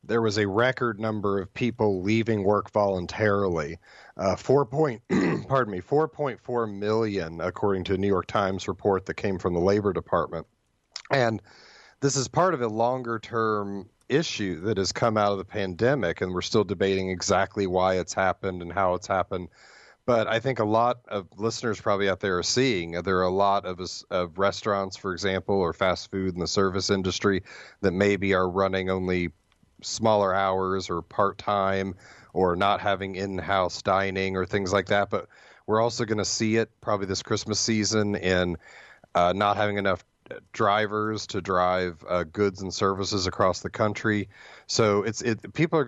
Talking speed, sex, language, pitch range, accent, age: 185 wpm, male, English, 95-110 Hz, American, 40-59